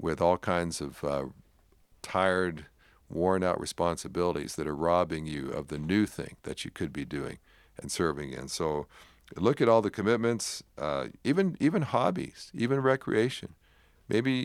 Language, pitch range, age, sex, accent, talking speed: English, 85-110 Hz, 50-69, male, American, 160 wpm